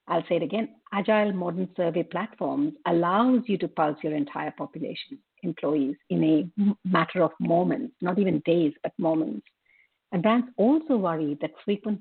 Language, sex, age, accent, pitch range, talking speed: English, female, 50-69, Indian, 160-215 Hz, 160 wpm